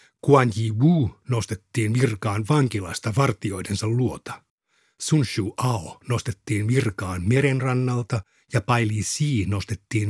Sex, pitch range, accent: male, 105-135 Hz, native